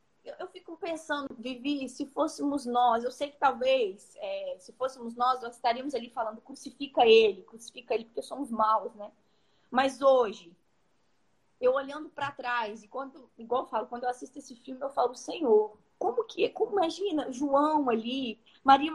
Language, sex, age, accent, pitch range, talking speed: Portuguese, female, 20-39, Brazilian, 230-295 Hz, 170 wpm